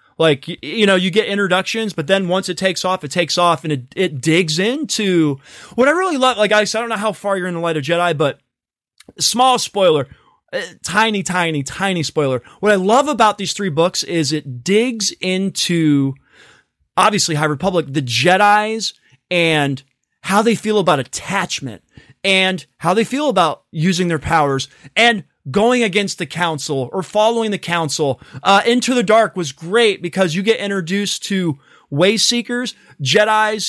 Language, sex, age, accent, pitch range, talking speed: English, male, 20-39, American, 165-220 Hz, 175 wpm